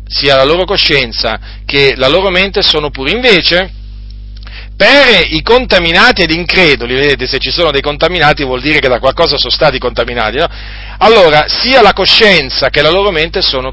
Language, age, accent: Italian, 40-59, native